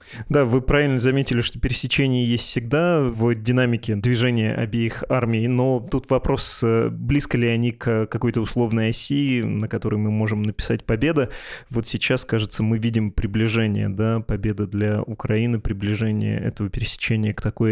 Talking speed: 145 wpm